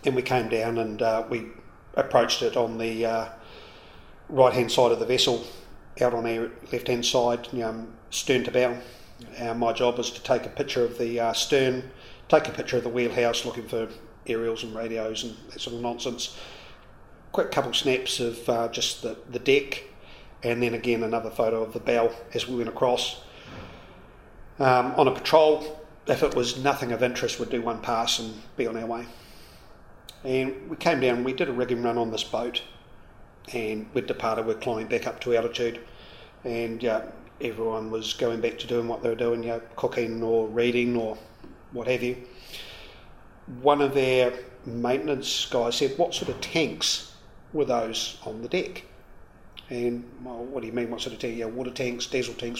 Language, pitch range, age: English, 115-125 Hz, 40-59